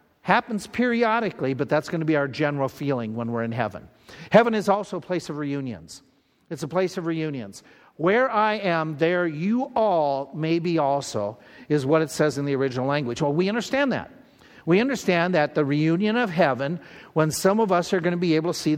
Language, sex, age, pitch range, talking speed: English, male, 50-69, 145-195 Hz, 210 wpm